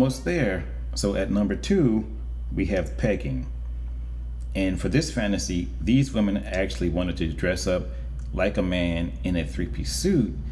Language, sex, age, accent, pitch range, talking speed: English, male, 30-49, American, 65-95 Hz, 150 wpm